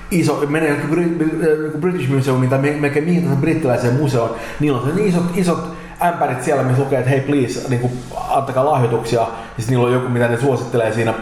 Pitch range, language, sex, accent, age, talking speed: 125-160 Hz, Finnish, male, native, 30-49, 175 wpm